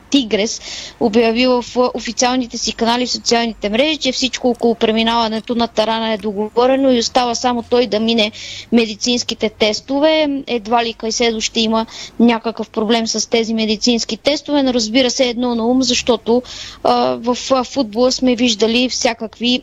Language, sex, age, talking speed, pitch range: Bulgarian, female, 20-39, 155 wpm, 220-250 Hz